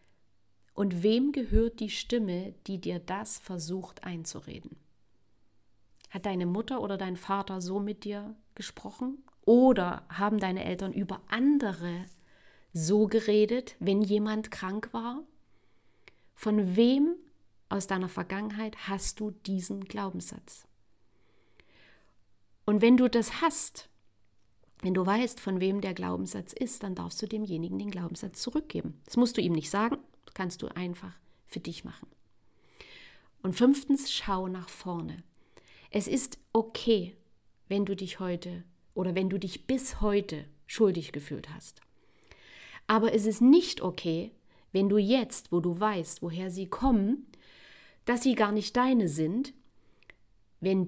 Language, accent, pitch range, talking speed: German, German, 180-225 Hz, 135 wpm